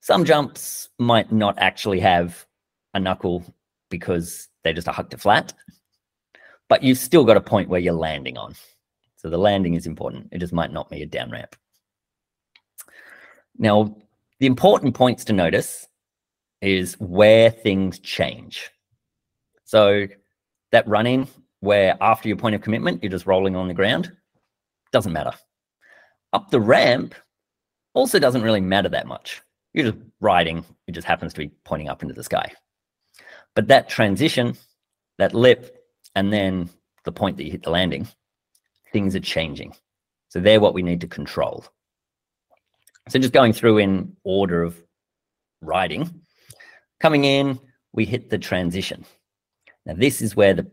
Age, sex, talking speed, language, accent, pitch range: 30-49, male, 155 wpm, English, Australian, 90-115 Hz